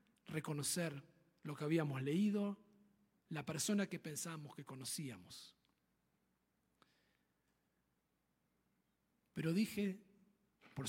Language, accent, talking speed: Spanish, Argentinian, 75 wpm